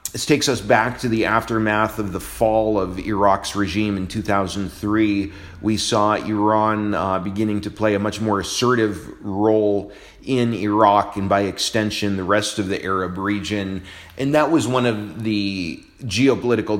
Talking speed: 160 wpm